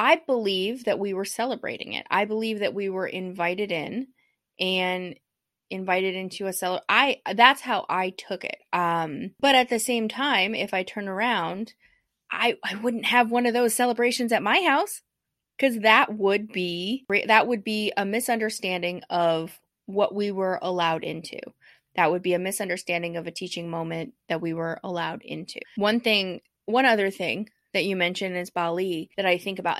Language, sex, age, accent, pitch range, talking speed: English, female, 20-39, American, 175-225 Hz, 180 wpm